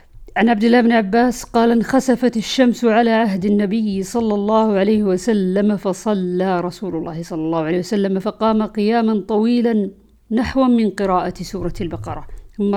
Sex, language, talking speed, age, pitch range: female, Arabic, 145 wpm, 50-69, 185-230 Hz